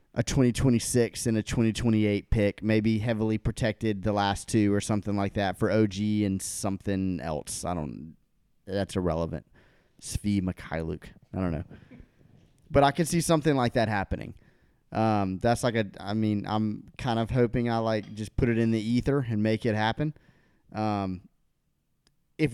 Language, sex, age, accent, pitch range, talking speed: English, male, 30-49, American, 100-125 Hz, 165 wpm